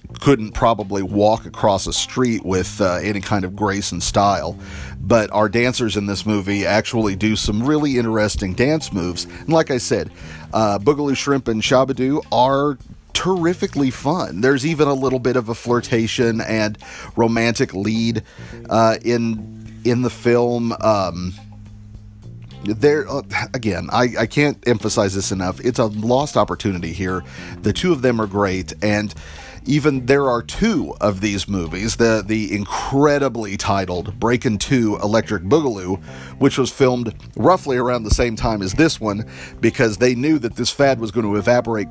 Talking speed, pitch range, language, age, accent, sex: 160 wpm, 100-125 Hz, English, 40-59, American, male